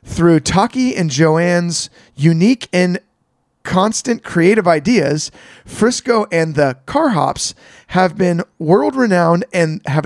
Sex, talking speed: male, 120 wpm